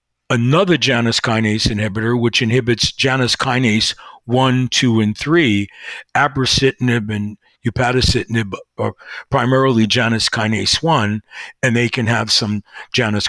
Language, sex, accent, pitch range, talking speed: English, male, American, 110-130 Hz, 115 wpm